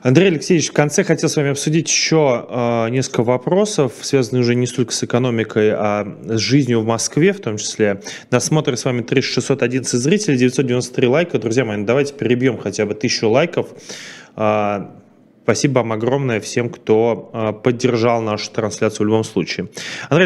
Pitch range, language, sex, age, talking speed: 110-130 Hz, Russian, male, 20-39, 155 wpm